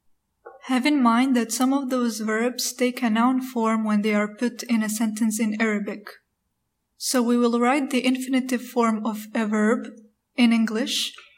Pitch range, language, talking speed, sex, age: 210-245 Hz, Arabic, 175 wpm, female, 20-39